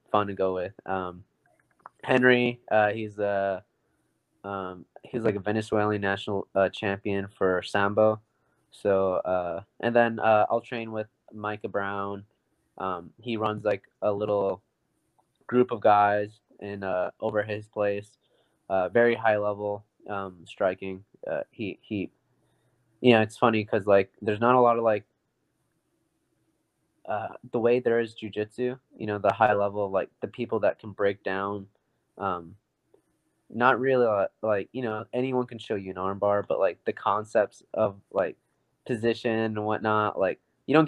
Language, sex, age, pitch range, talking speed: English, male, 20-39, 100-120 Hz, 155 wpm